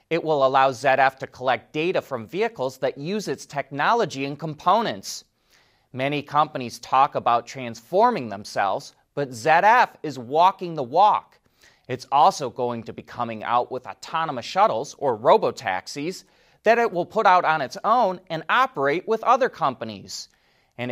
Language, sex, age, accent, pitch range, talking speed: English, male, 30-49, American, 125-190 Hz, 150 wpm